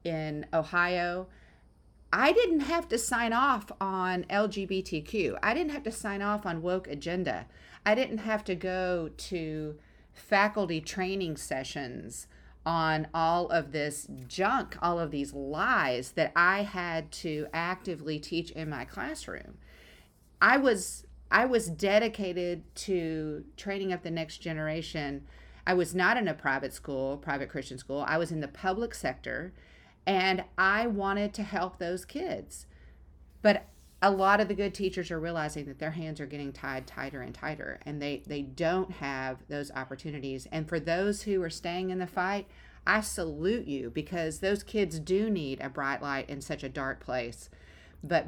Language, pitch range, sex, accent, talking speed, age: English, 145-195 Hz, female, American, 165 wpm, 40-59